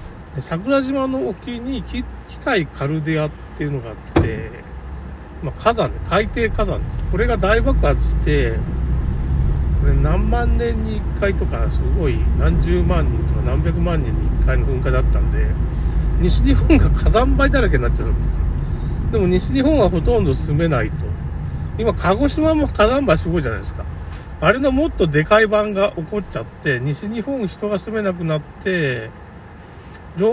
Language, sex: Japanese, male